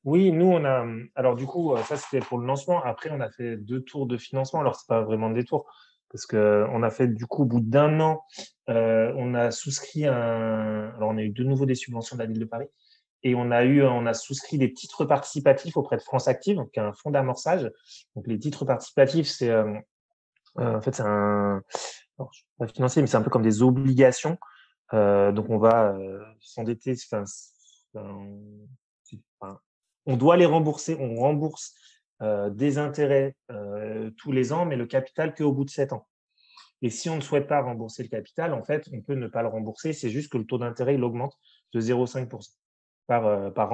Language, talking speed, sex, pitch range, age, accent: French, 210 wpm, male, 110-145 Hz, 20-39, French